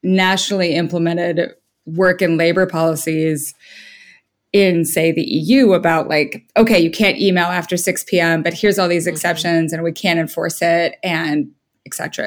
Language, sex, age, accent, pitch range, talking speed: English, female, 20-39, American, 160-185 Hz, 155 wpm